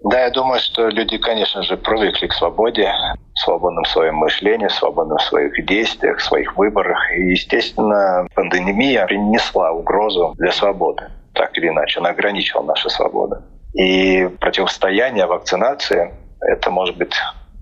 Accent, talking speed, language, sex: native, 145 wpm, Russian, male